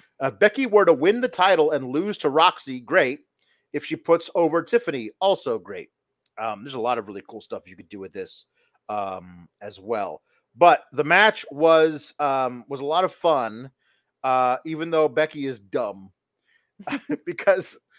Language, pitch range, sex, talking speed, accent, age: English, 145-215 Hz, male, 175 wpm, American, 30-49